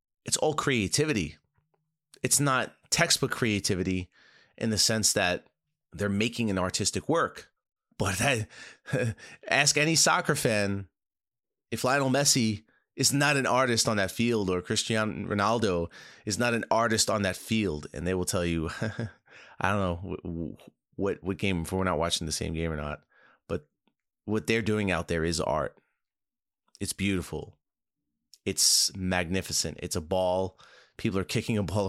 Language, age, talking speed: English, 30-49, 155 wpm